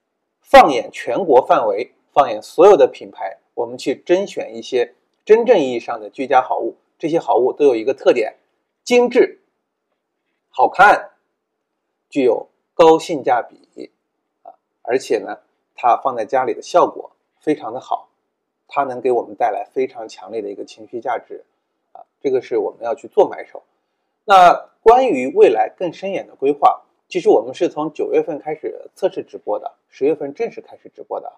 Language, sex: Chinese, male